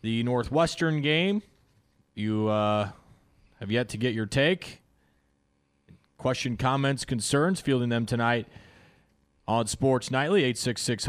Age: 30-49